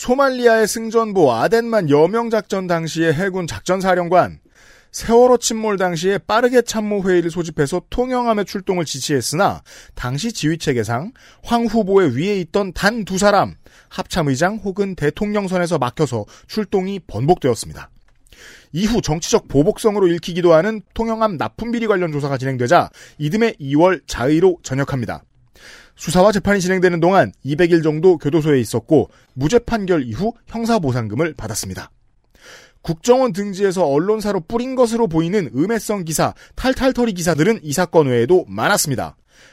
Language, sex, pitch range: Korean, male, 145-215 Hz